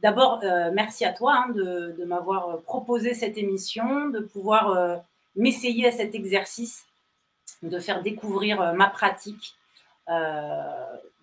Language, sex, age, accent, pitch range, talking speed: French, female, 30-49, French, 170-220 Hz, 135 wpm